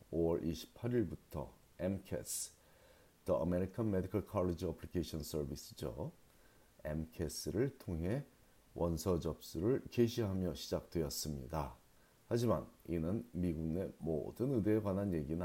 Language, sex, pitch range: Korean, male, 85-115 Hz